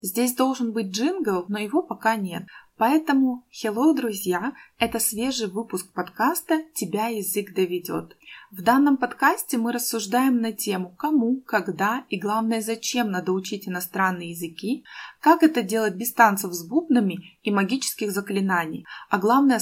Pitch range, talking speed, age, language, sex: 195-260 Hz, 145 wpm, 20-39, Russian, female